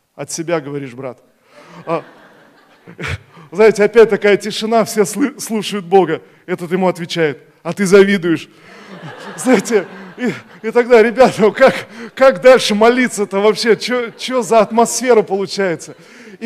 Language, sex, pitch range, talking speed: Russian, male, 180-225 Hz, 115 wpm